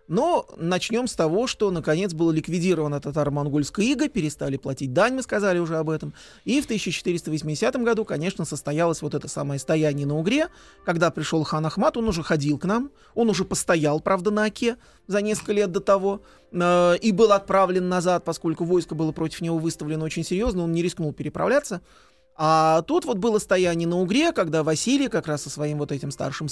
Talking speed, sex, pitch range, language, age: 185 wpm, male, 160-210 Hz, Russian, 30-49